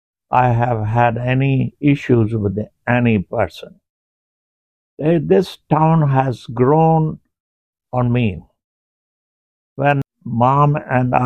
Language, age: English, 60-79